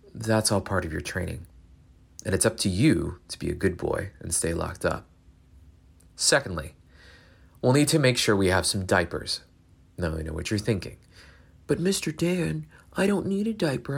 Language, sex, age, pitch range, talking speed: English, male, 30-49, 85-115 Hz, 190 wpm